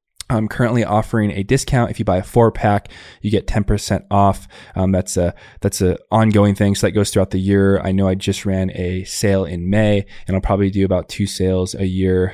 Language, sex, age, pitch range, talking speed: English, male, 20-39, 95-105 Hz, 230 wpm